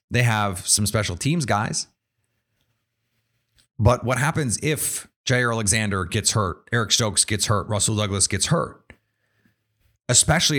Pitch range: 105-120 Hz